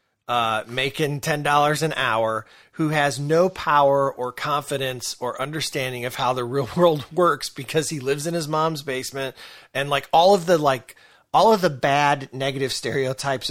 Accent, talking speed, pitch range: American, 170 wpm, 125-155 Hz